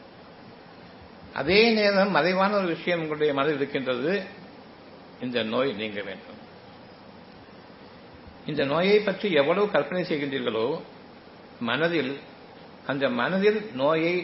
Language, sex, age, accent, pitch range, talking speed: Tamil, male, 60-79, native, 140-195 Hz, 95 wpm